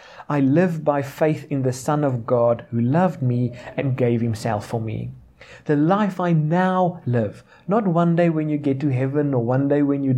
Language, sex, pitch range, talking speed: English, male, 120-150 Hz, 205 wpm